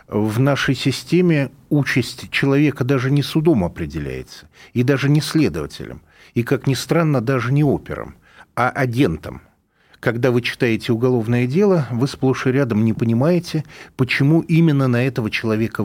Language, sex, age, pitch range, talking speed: Russian, male, 40-59, 110-145 Hz, 145 wpm